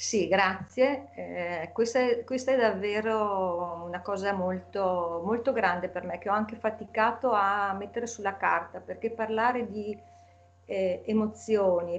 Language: Italian